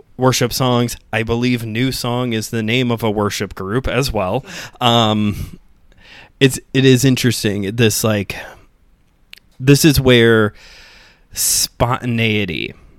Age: 20-39